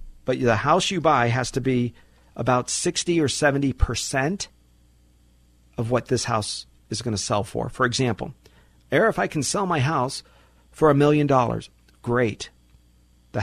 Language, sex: English, male